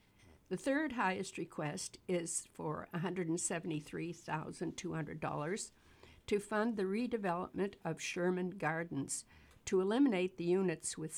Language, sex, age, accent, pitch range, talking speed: English, female, 60-79, American, 165-200 Hz, 100 wpm